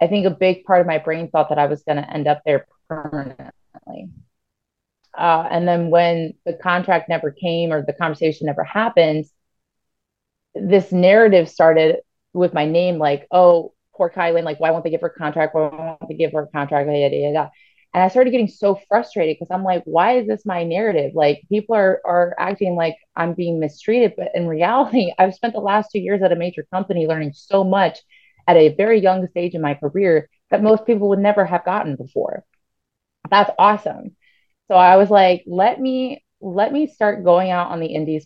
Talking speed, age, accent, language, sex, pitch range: 200 wpm, 30-49, American, English, female, 160-195 Hz